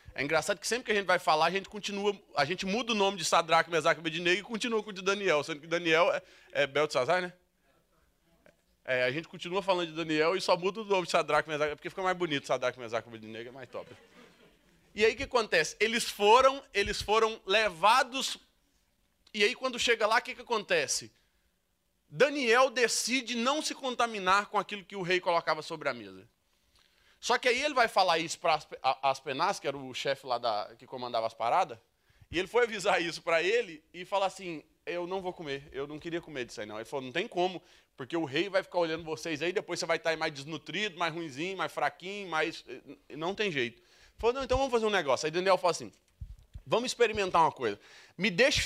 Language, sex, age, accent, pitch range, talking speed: Portuguese, male, 20-39, Brazilian, 160-220 Hz, 220 wpm